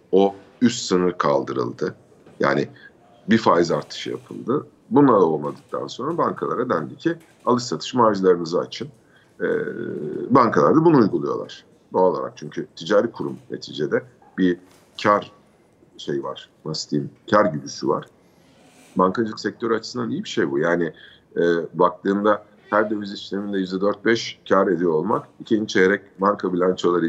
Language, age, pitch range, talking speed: Turkish, 50-69, 90-120 Hz, 130 wpm